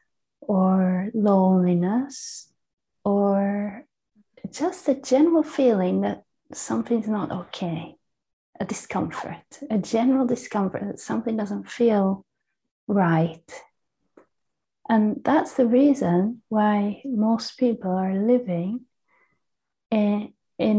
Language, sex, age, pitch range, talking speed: English, female, 30-49, 200-255 Hz, 90 wpm